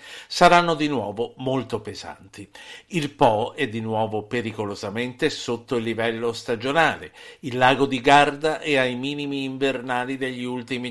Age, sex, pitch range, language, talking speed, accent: 50-69, male, 105-145 Hz, Italian, 140 wpm, native